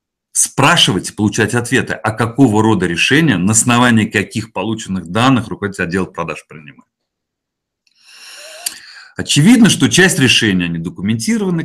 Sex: male